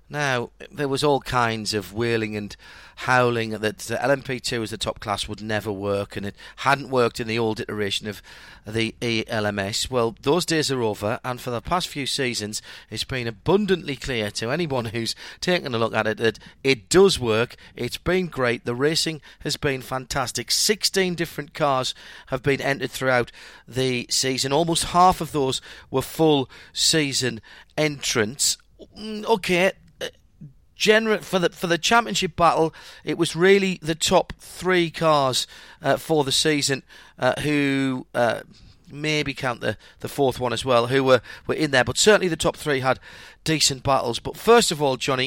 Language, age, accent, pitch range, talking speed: English, 40-59, British, 120-160 Hz, 170 wpm